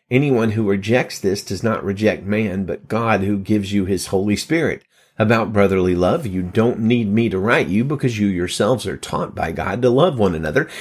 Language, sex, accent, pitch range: English, male, American, 100-130 Hz